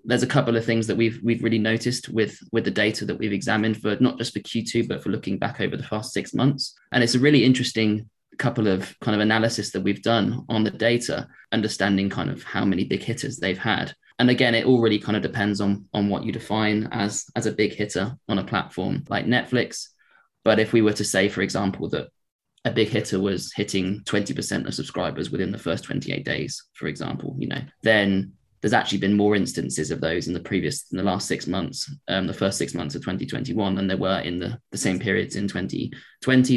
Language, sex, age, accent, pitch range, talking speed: English, male, 20-39, British, 100-120 Hz, 225 wpm